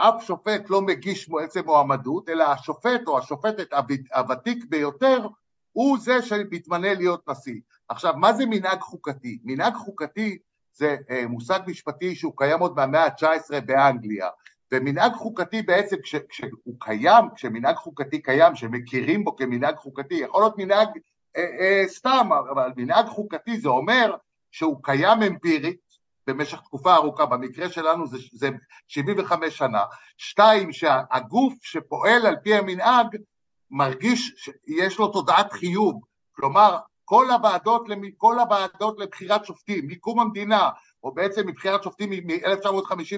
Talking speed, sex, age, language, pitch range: 130 wpm, male, 60-79, Hebrew, 155-220 Hz